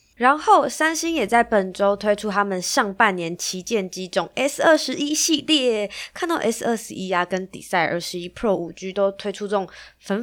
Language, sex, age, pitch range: Chinese, female, 20-39, 185-250 Hz